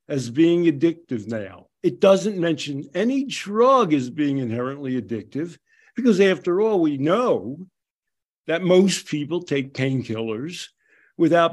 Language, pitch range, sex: English, 145-225 Hz, male